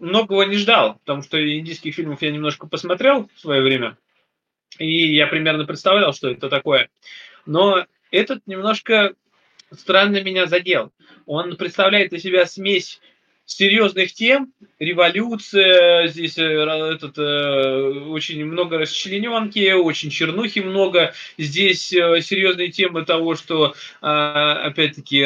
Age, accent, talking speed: 20-39, native, 115 wpm